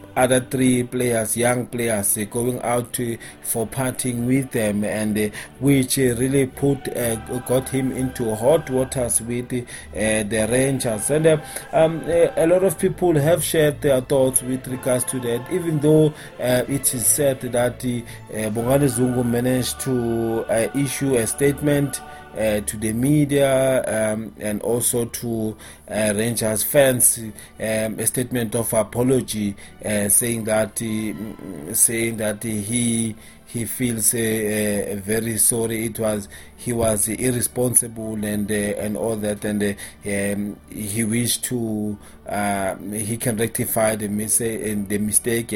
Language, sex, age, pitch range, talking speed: English, male, 30-49, 105-130 Hz, 140 wpm